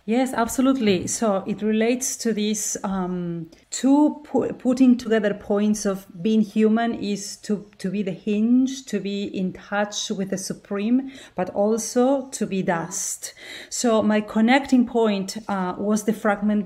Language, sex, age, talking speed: English, female, 30-49, 150 wpm